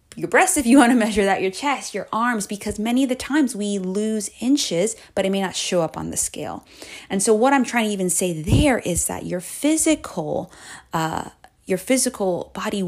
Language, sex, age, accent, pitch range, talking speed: English, female, 20-39, American, 170-215 Hz, 205 wpm